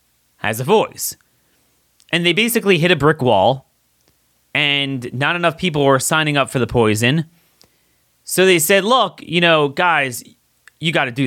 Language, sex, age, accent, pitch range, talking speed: English, male, 30-49, American, 135-195 Hz, 165 wpm